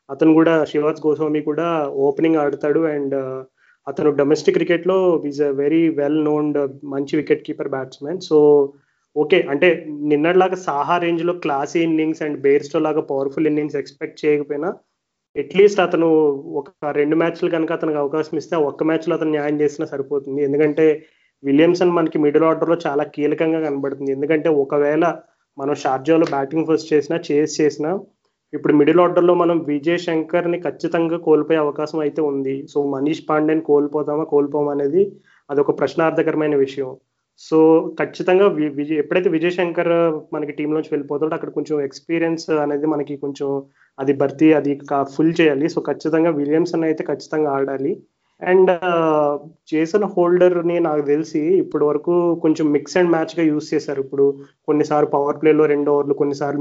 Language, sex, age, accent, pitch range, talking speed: Telugu, male, 30-49, native, 145-165 Hz, 145 wpm